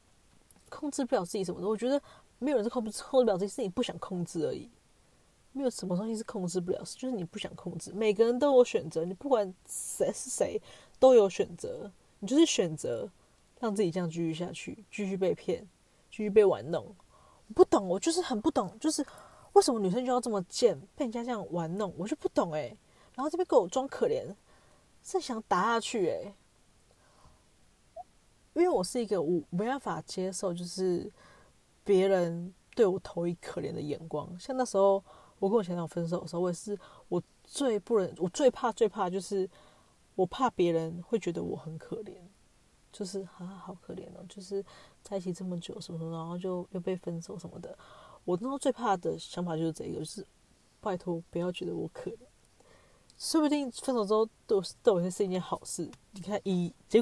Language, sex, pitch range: Chinese, female, 180-250 Hz